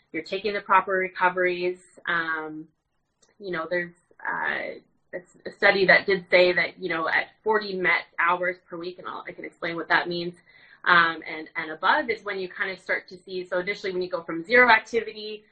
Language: English